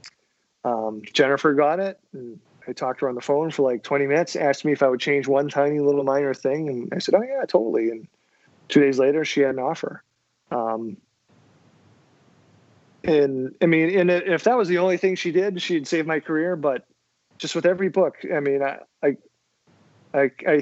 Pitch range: 135-160 Hz